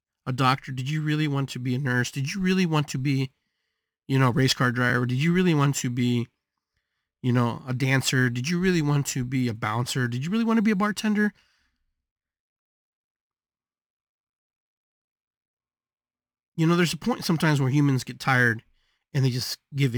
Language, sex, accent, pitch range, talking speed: English, male, American, 125-165 Hz, 185 wpm